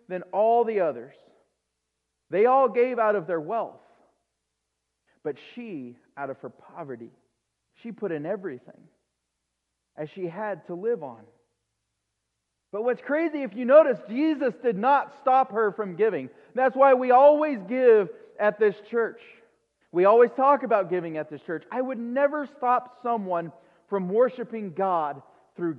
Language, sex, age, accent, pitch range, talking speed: English, male, 40-59, American, 170-255 Hz, 150 wpm